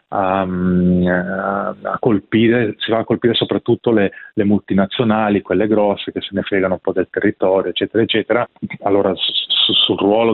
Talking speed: 170 wpm